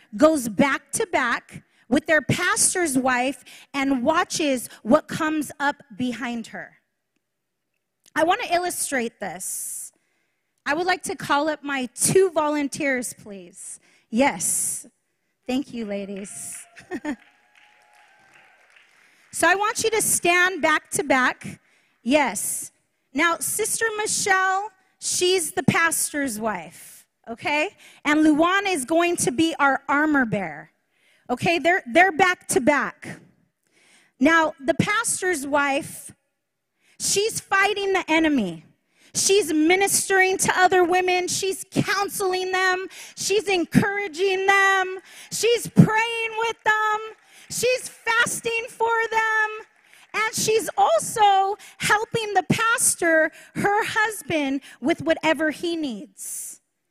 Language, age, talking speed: English, 30-49, 110 wpm